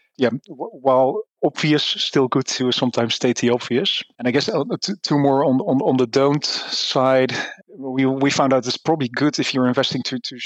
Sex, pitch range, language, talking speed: male, 120-140 Hz, English, 200 wpm